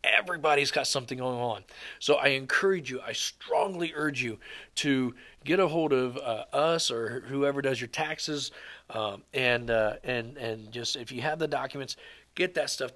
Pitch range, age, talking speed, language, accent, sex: 120-145 Hz, 40-59, 180 wpm, English, American, male